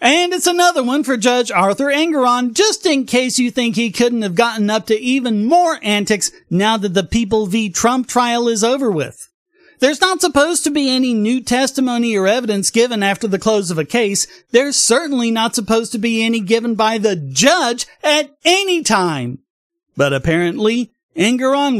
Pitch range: 170-245 Hz